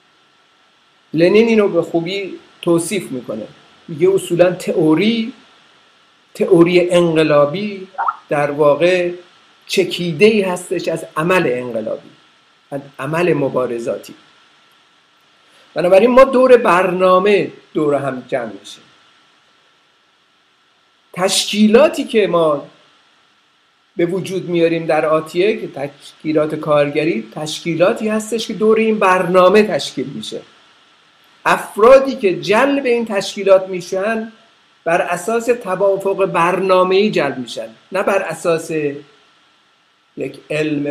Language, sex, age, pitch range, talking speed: Persian, male, 50-69, 165-215 Hz, 95 wpm